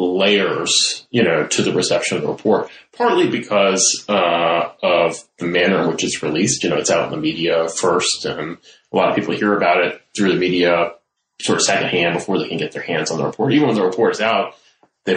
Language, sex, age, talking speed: English, male, 30-49, 230 wpm